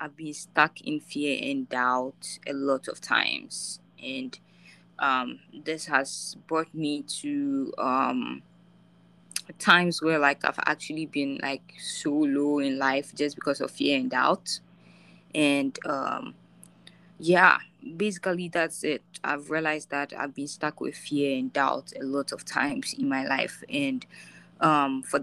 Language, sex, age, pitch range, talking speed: English, female, 20-39, 145-180 Hz, 145 wpm